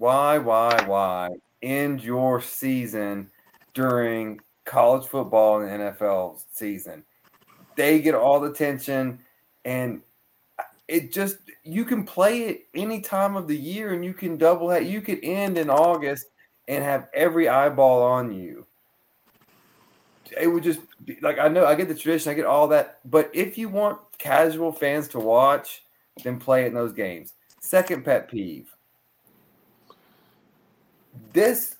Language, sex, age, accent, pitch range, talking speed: English, male, 30-49, American, 120-165 Hz, 150 wpm